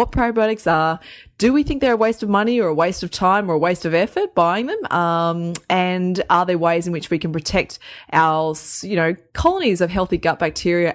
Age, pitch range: 20-39, 160-185 Hz